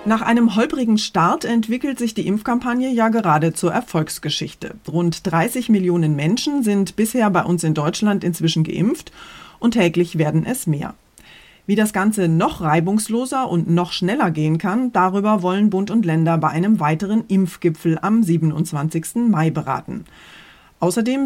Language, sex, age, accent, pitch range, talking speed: German, female, 30-49, German, 165-220 Hz, 150 wpm